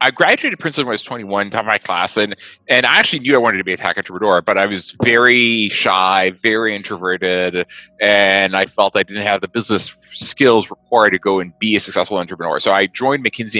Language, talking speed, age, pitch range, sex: English, 225 wpm, 30-49, 95-110 Hz, male